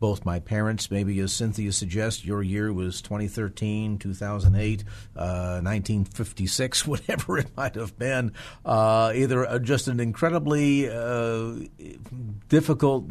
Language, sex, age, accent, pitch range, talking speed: English, male, 50-69, American, 100-125 Hz, 120 wpm